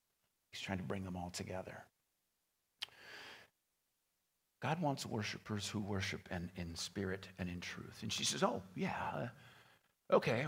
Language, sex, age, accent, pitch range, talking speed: English, male, 50-69, American, 130-175 Hz, 135 wpm